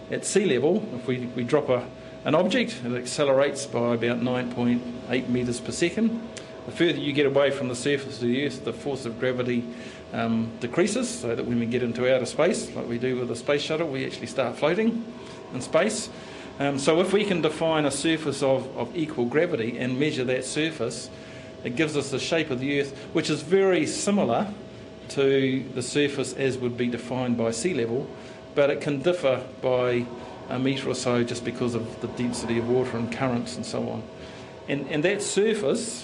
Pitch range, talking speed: 125-145 Hz, 200 wpm